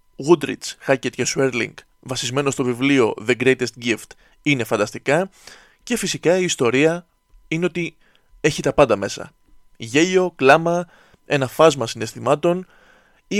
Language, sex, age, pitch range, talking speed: Greek, male, 20-39, 125-175 Hz, 125 wpm